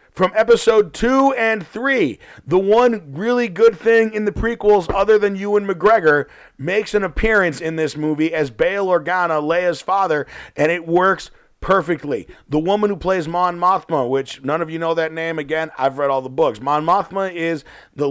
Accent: American